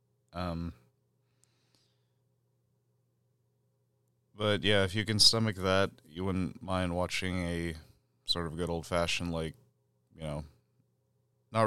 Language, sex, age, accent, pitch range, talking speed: English, male, 30-49, American, 80-105 Hz, 115 wpm